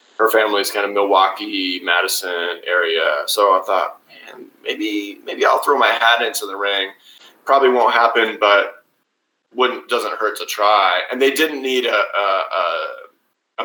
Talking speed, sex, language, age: 160 wpm, male, English, 30-49